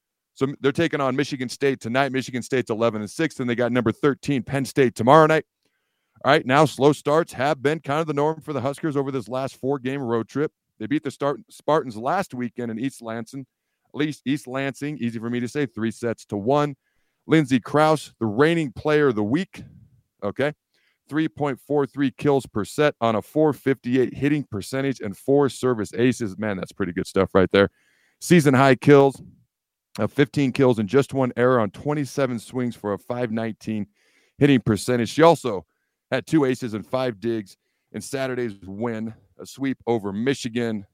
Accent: American